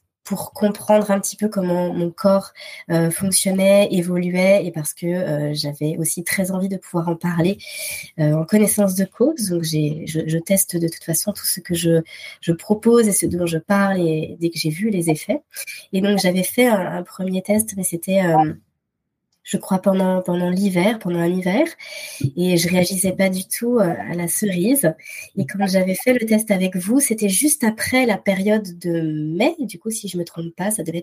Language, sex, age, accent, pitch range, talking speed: French, female, 20-39, French, 175-215 Hz, 210 wpm